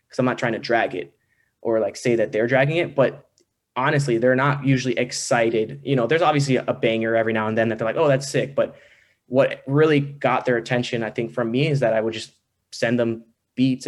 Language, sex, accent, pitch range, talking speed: English, male, American, 115-130 Hz, 235 wpm